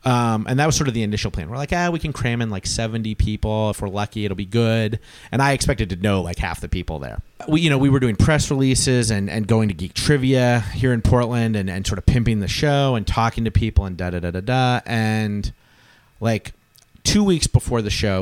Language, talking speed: English, 245 wpm